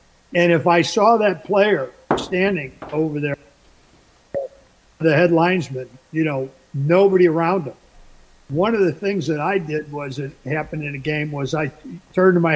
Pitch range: 155-195 Hz